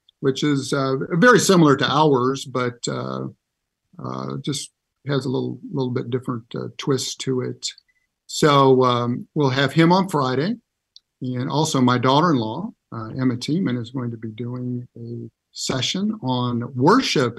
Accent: American